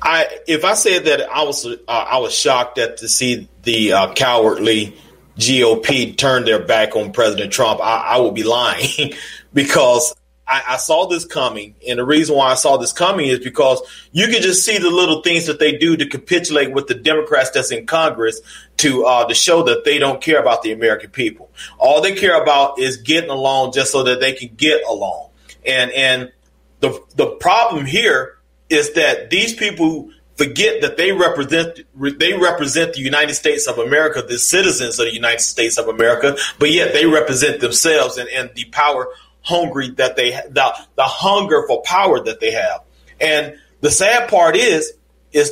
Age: 30-49